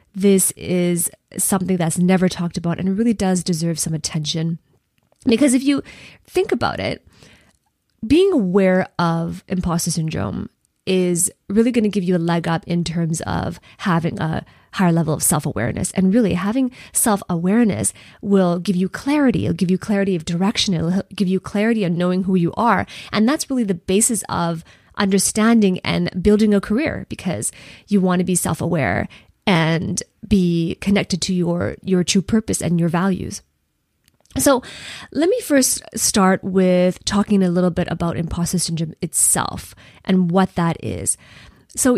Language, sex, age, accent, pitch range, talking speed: English, female, 20-39, American, 170-205 Hz, 160 wpm